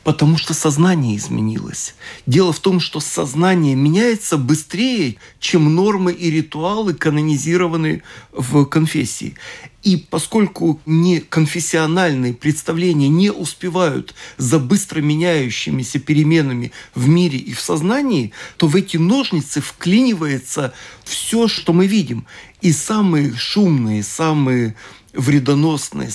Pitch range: 145-180 Hz